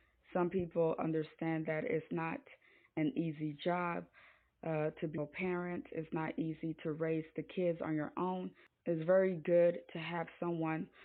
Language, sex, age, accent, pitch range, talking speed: English, female, 20-39, American, 160-175 Hz, 165 wpm